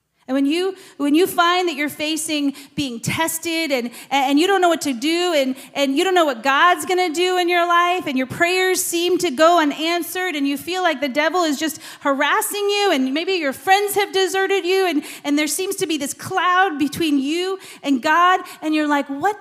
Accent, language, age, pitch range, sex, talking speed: American, English, 30-49, 255-345 Hz, female, 225 wpm